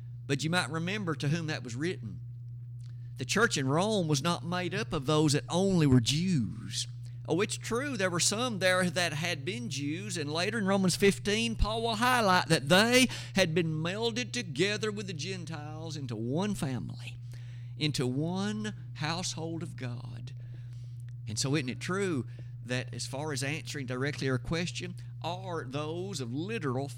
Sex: male